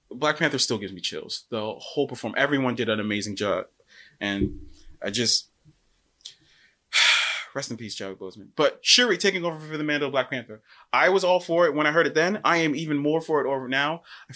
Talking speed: 215 wpm